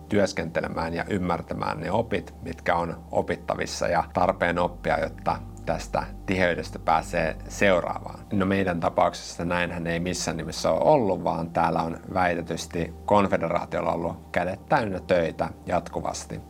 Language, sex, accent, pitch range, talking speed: Finnish, male, native, 85-95 Hz, 130 wpm